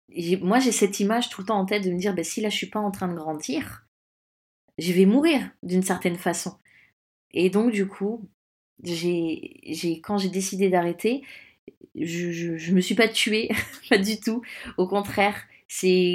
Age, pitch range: 20-39, 175-220 Hz